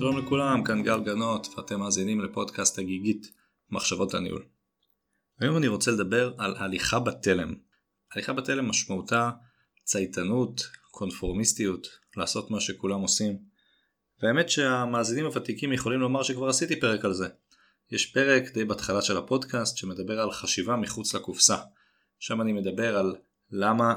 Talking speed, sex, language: 135 wpm, male, Hebrew